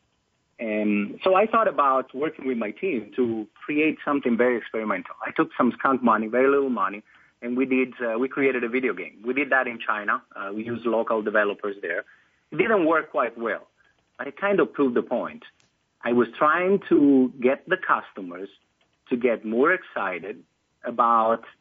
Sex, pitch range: male, 115-140 Hz